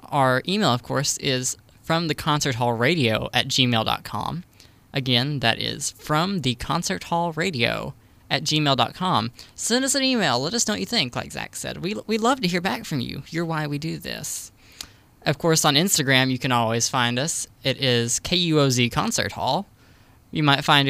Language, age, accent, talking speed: English, 10-29, American, 195 wpm